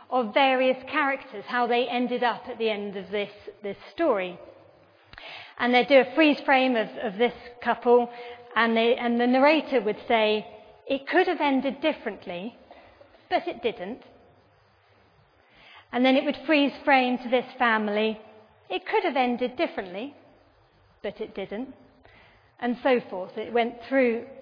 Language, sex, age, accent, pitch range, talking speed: English, female, 40-59, British, 220-275 Hz, 150 wpm